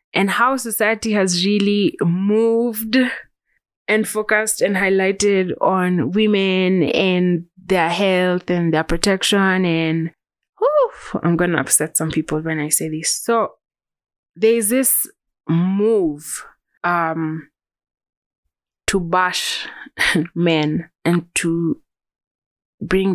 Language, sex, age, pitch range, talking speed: English, female, 20-39, 160-205 Hz, 105 wpm